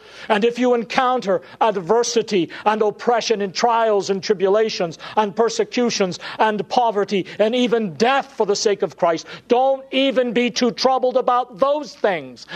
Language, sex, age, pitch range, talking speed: English, male, 50-69, 190-245 Hz, 150 wpm